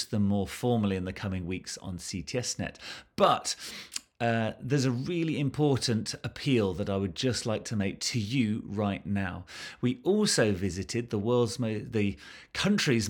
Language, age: English, 30-49